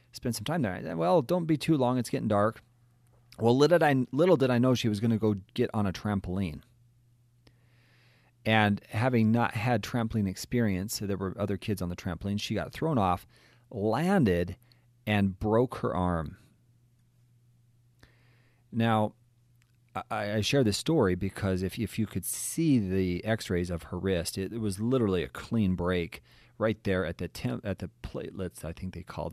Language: English